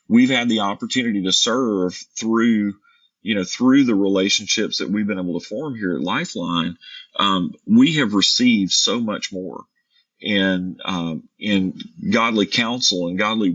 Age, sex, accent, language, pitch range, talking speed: 40-59, male, American, English, 95-125 Hz, 155 wpm